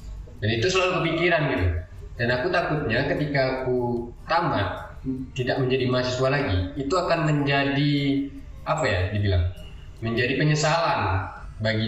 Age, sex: 20-39, male